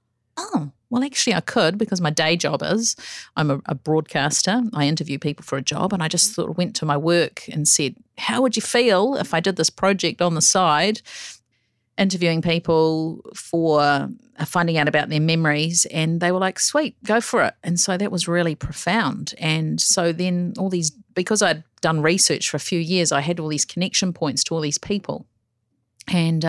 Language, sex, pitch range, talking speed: English, female, 150-190 Hz, 200 wpm